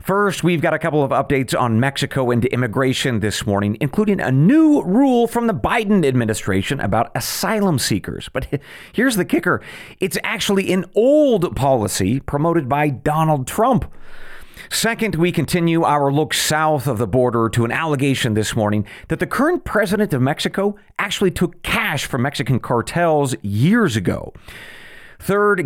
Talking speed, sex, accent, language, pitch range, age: 155 wpm, male, American, English, 115-180 Hz, 40-59